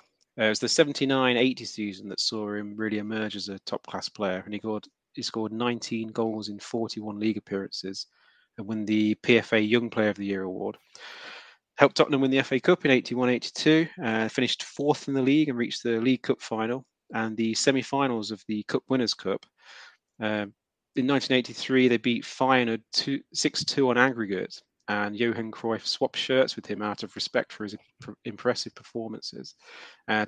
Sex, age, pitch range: male, 30-49, 105-125 Hz